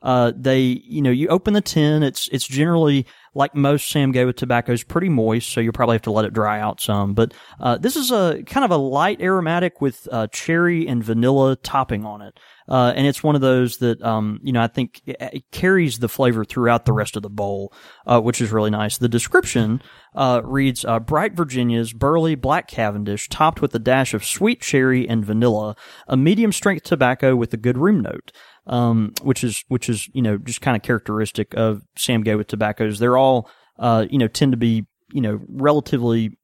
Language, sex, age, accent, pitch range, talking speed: English, male, 30-49, American, 110-140 Hz, 210 wpm